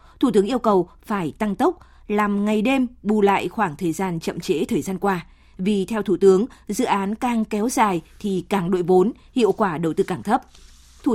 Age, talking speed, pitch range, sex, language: 20-39, 215 wpm, 185-225 Hz, female, Vietnamese